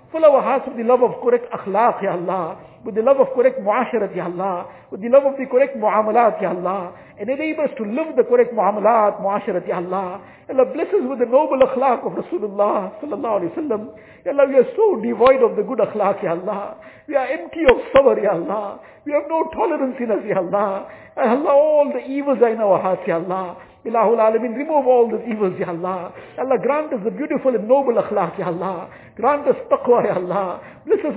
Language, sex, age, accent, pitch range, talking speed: English, male, 60-79, Indian, 200-275 Hz, 220 wpm